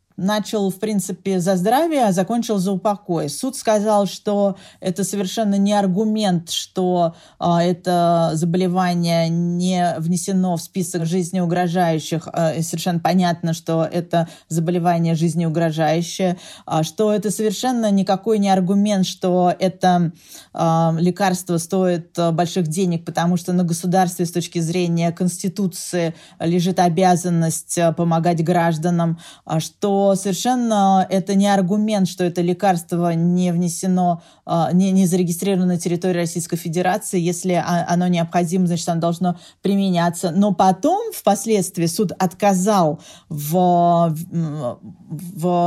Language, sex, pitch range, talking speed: Russian, female, 170-195 Hz, 110 wpm